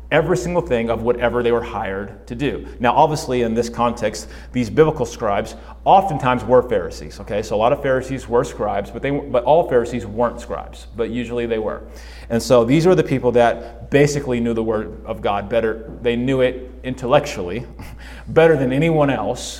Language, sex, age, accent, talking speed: English, male, 30-49, American, 190 wpm